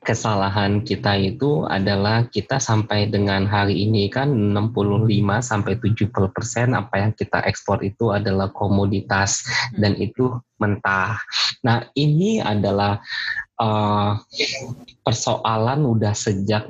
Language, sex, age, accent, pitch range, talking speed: Indonesian, male, 20-39, native, 100-125 Hz, 100 wpm